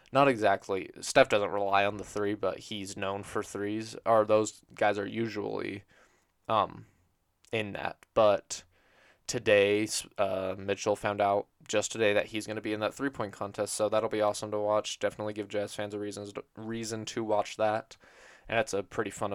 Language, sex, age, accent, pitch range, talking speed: English, male, 20-39, American, 95-110 Hz, 180 wpm